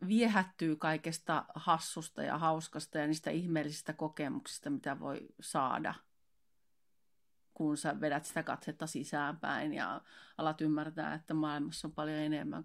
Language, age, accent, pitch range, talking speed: Finnish, 30-49, native, 150-175 Hz, 125 wpm